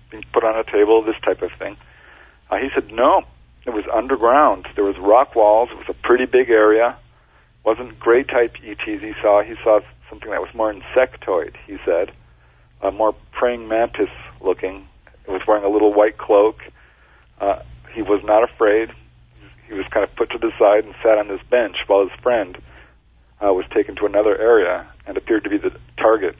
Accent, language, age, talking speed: American, English, 50-69, 200 wpm